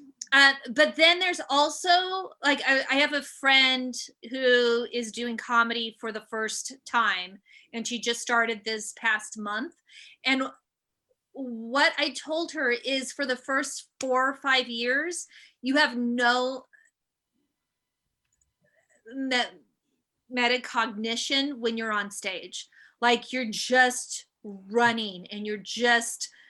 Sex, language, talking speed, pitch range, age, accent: female, English, 120 wpm, 230-270 Hz, 30-49, American